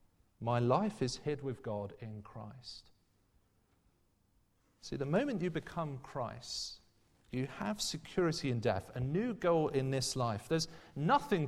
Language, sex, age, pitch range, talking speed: English, male, 40-59, 105-155 Hz, 140 wpm